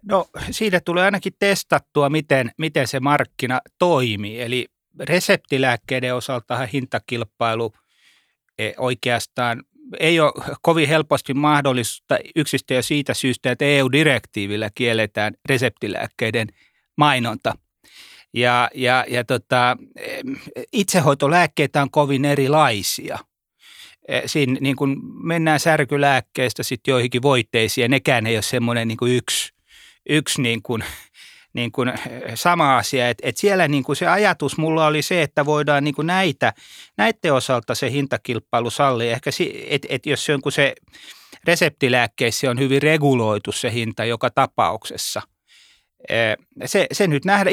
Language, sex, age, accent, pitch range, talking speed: Finnish, male, 30-49, native, 120-150 Hz, 125 wpm